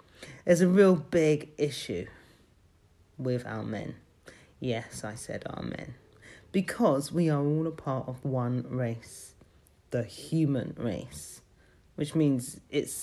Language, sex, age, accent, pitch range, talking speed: English, male, 40-59, British, 125-155 Hz, 125 wpm